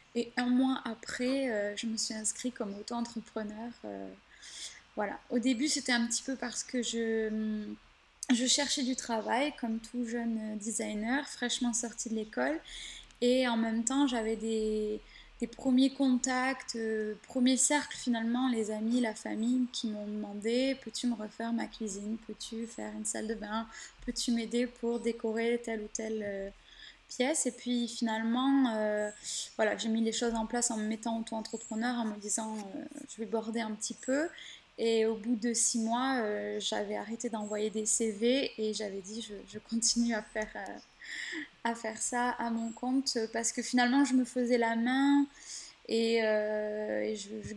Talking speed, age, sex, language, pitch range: 175 wpm, 20-39, female, French, 215-245 Hz